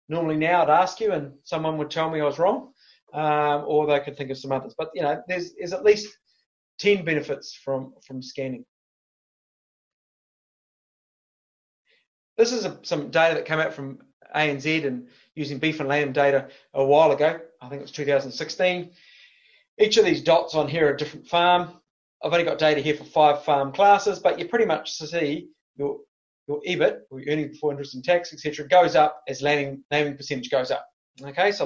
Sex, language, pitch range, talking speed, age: male, English, 140-175 Hz, 195 wpm, 30-49